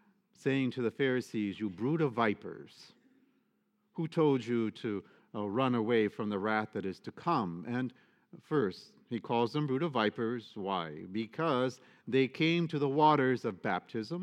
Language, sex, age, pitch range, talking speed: English, male, 50-69, 110-150 Hz, 165 wpm